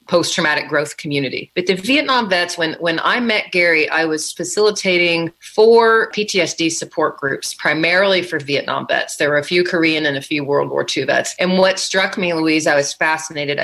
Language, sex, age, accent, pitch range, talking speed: English, female, 40-59, American, 150-180 Hz, 190 wpm